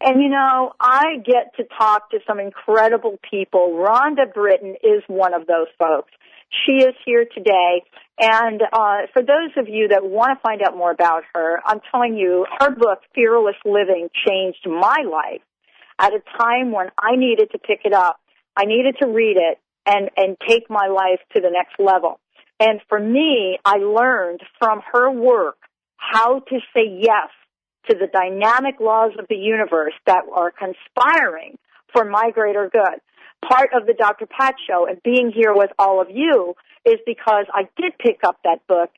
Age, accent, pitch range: 50-69, American, 190-250 Hz